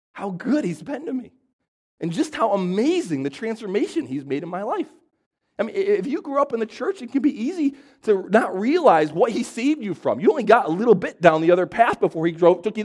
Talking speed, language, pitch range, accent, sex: 250 wpm, English, 210-320 Hz, American, male